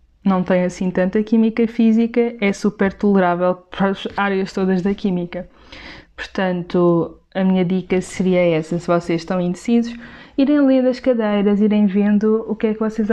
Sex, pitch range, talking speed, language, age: female, 185-225 Hz, 165 wpm, Portuguese, 20-39